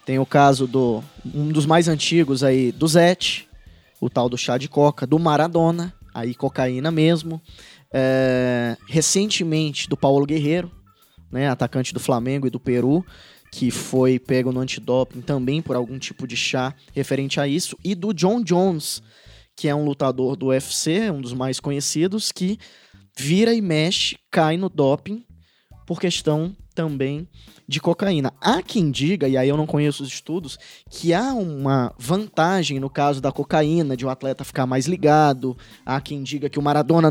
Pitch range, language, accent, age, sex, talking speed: 130-170 Hz, Portuguese, Brazilian, 20-39, male, 165 wpm